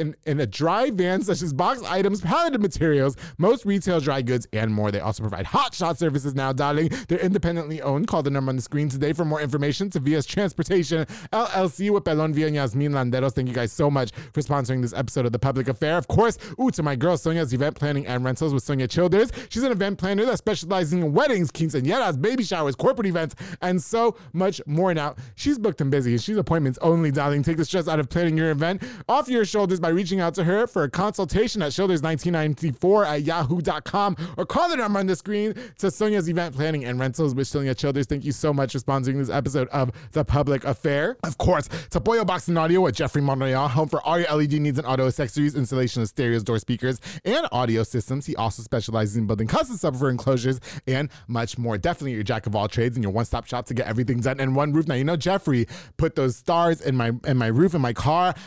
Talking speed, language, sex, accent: 220 wpm, English, male, American